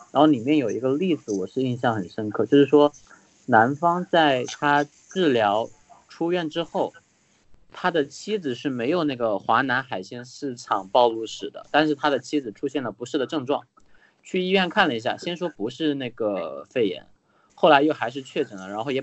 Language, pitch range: Chinese, 115-155 Hz